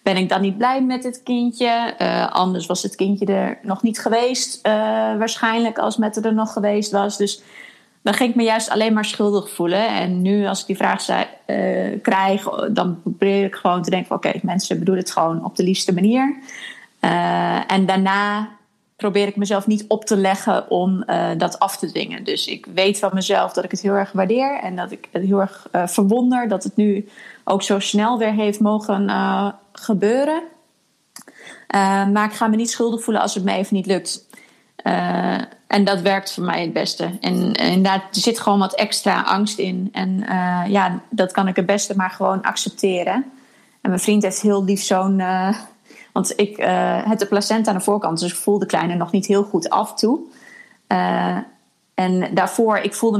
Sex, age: female, 20-39